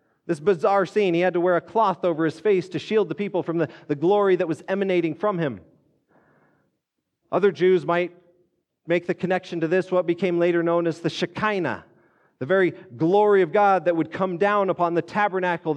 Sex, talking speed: male, 200 wpm